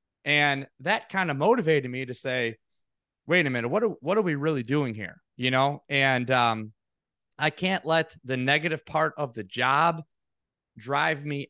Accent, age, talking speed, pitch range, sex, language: American, 30-49, 170 wpm, 125-170 Hz, male, English